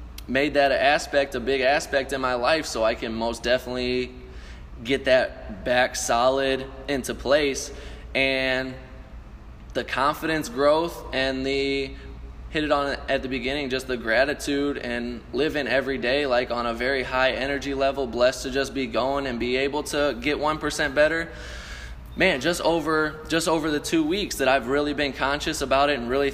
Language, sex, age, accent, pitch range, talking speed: English, male, 20-39, American, 120-140 Hz, 170 wpm